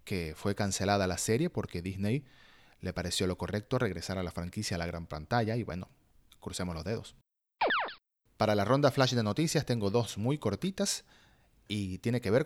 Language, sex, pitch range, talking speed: Spanish, male, 95-130 Hz, 185 wpm